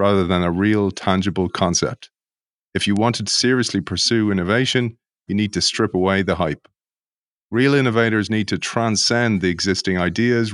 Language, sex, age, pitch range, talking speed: English, male, 30-49, 95-110 Hz, 160 wpm